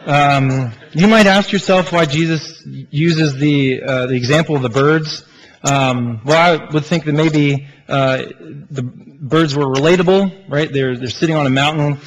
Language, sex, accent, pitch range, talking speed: English, male, American, 125-155 Hz, 170 wpm